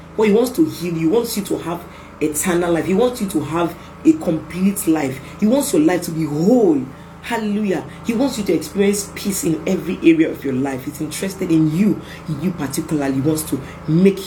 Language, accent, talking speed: English, Nigerian, 220 wpm